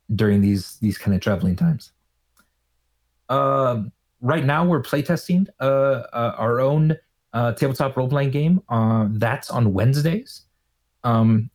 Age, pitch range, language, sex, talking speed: 30-49, 110-150 Hz, English, male, 135 wpm